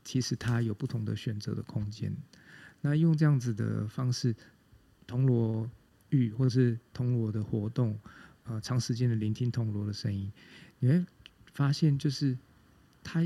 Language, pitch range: Chinese, 110-135 Hz